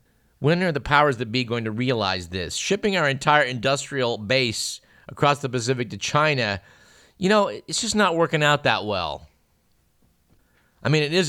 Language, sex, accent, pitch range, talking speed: English, male, American, 100-140 Hz, 175 wpm